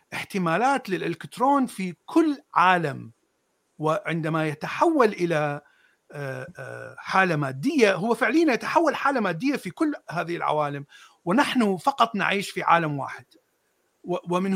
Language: Arabic